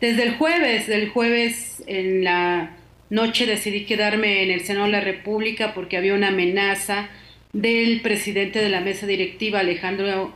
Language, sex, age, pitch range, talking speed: Spanish, female, 40-59, 185-210 Hz, 155 wpm